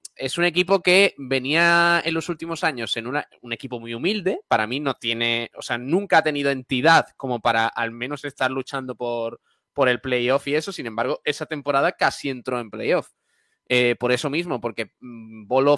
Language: Spanish